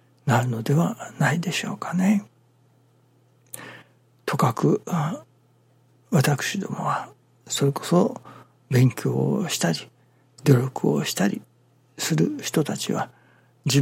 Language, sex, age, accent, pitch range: Japanese, male, 60-79, native, 125-165 Hz